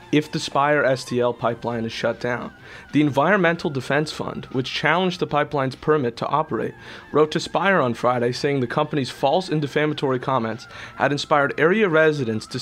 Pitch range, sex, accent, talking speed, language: 120-150 Hz, male, American, 170 wpm, English